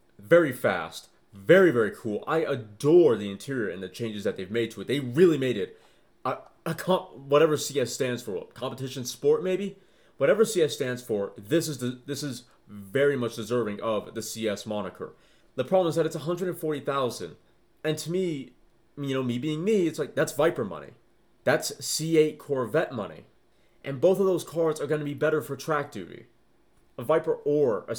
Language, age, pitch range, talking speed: English, 30-49, 115-155 Hz, 185 wpm